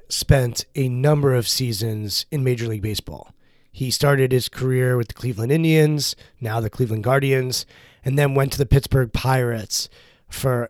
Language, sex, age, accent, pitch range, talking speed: English, male, 30-49, American, 125-150 Hz, 165 wpm